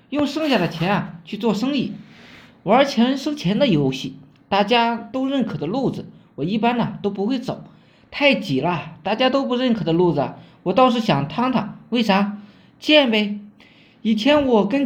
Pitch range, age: 190-255 Hz, 20-39